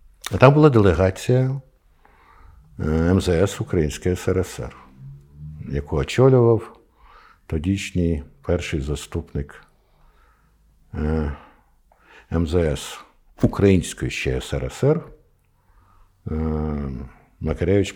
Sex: male